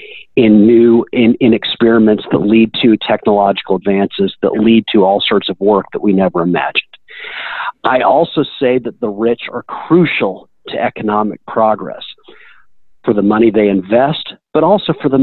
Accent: American